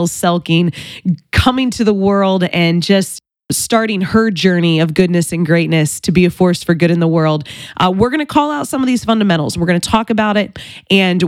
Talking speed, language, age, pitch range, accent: 215 wpm, English, 20-39, 170-210 Hz, American